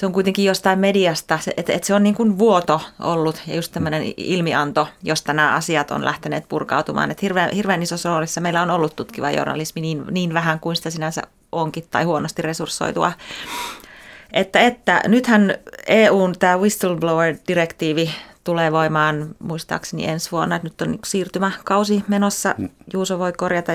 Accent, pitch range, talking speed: native, 155-195 Hz, 155 wpm